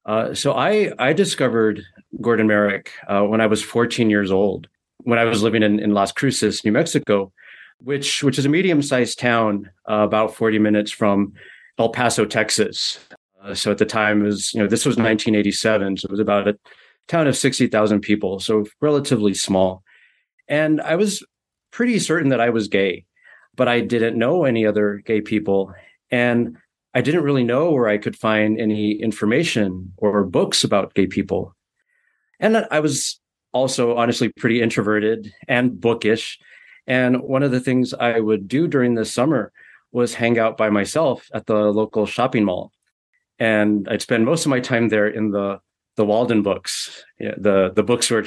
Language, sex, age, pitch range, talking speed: English, male, 30-49, 105-125 Hz, 175 wpm